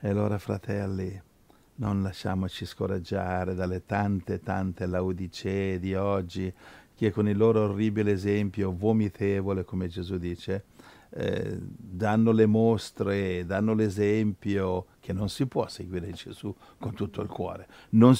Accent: native